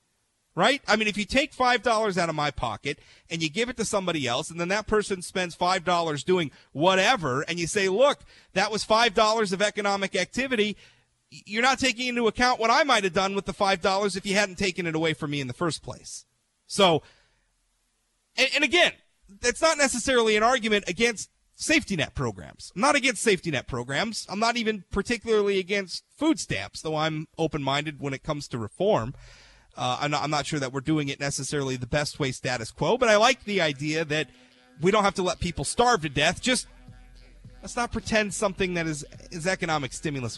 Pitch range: 140-215 Hz